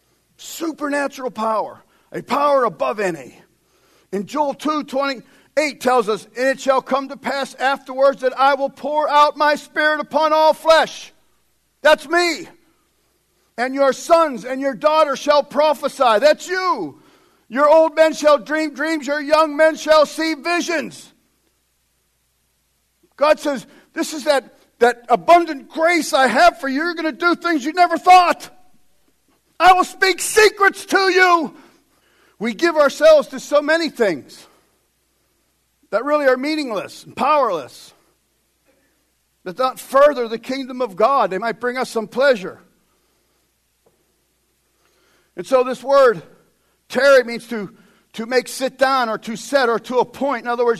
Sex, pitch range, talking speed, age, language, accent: male, 245-310 Hz, 150 wpm, 50-69, English, American